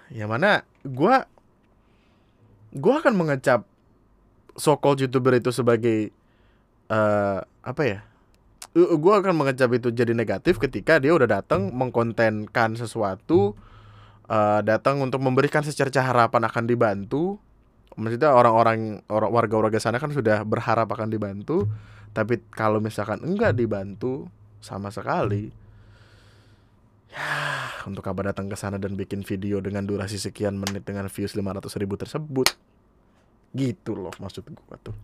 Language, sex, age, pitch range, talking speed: Indonesian, male, 20-39, 105-130 Hz, 125 wpm